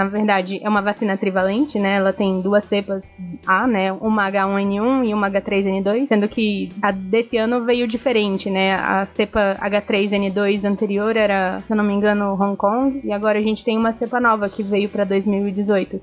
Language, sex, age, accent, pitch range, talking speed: Portuguese, female, 20-39, Brazilian, 200-230 Hz, 185 wpm